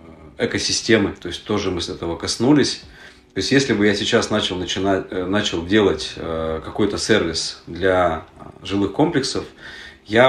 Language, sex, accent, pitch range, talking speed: Russian, male, native, 85-105 Hz, 145 wpm